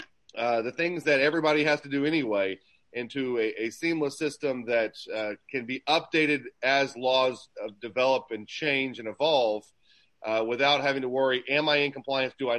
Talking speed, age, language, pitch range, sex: 175 wpm, 30-49, English, 115-150 Hz, male